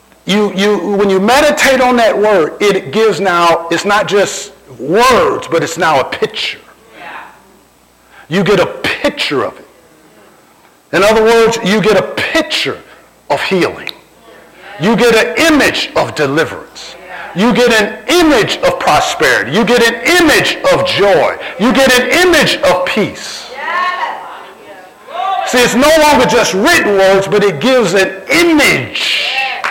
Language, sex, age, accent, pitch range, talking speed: English, male, 50-69, American, 210-310 Hz, 145 wpm